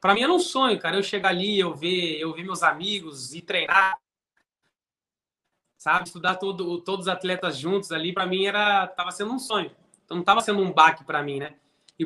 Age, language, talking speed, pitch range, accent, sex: 20-39, Portuguese, 210 wpm, 160-200 Hz, Brazilian, male